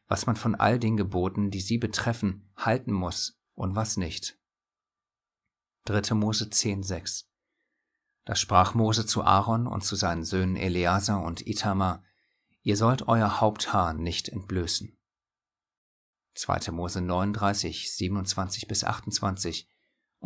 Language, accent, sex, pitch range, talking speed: German, German, male, 95-110 Hz, 120 wpm